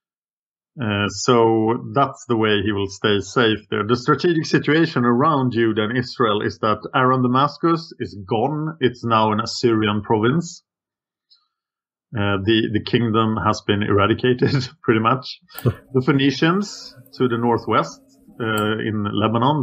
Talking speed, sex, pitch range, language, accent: 140 wpm, male, 115-155 Hz, English, Norwegian